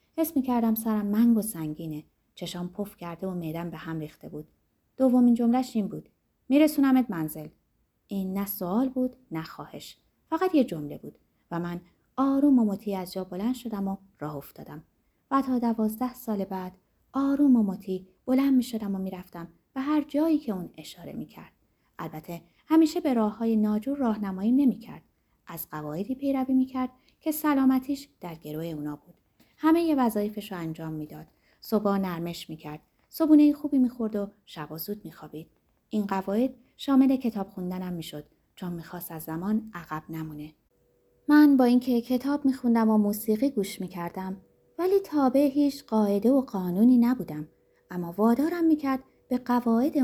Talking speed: 160 wpm